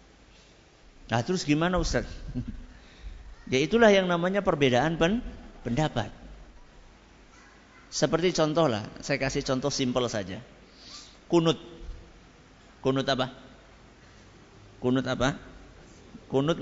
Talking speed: 90 wpm